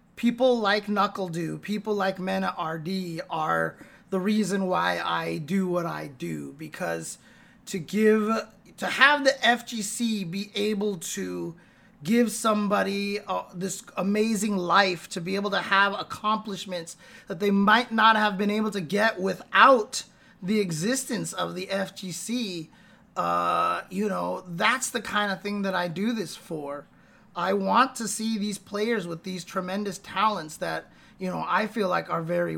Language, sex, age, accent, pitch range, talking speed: English, male, 30-49, American, 165-210 Hz, 155 wpm